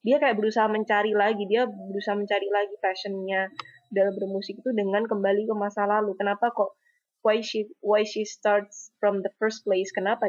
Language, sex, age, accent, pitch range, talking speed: Indonesian, female, 20-39, native, 190-220 Hz, 175 wpm